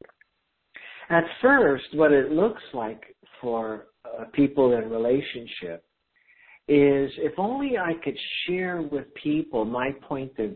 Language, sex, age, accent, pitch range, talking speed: English, male, 60-79, American, 120-170 Hz, 125 wpm